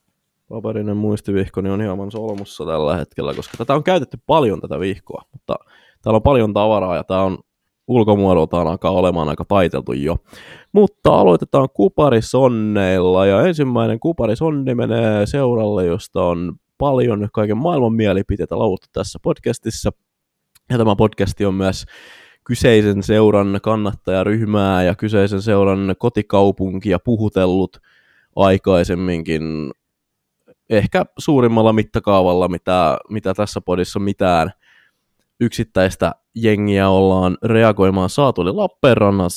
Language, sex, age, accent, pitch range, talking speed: Finnish, male, 20-39, native, 95-120 Hz, 115 wpm